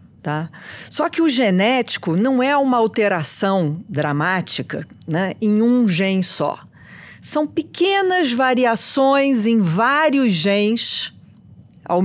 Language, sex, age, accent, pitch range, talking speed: English, female, 50-69, Brazilian, 170-220 Hz, 105 wpm